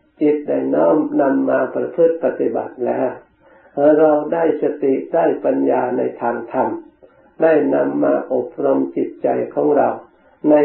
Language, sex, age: Thai, male, 60-79